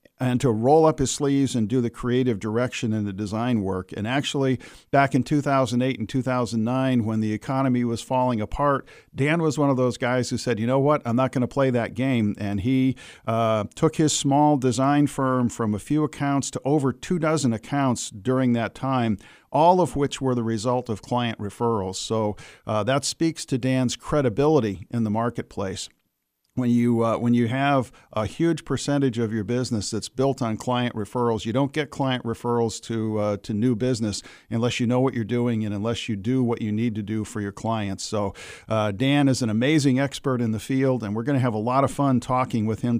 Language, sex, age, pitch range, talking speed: English, male, 50-69, 110-135 Hz, 210 wpm